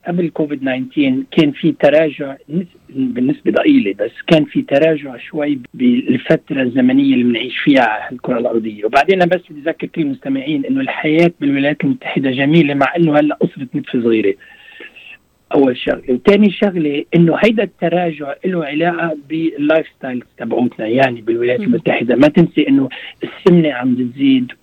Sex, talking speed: male, 145 wpm